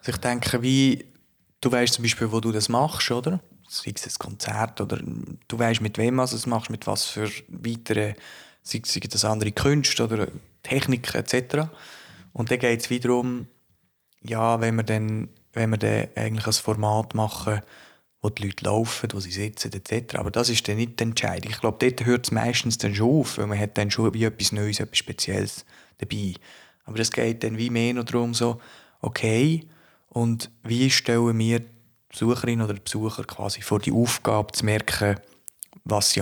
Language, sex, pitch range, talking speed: German, male, 105-120 Hz, 180 wpm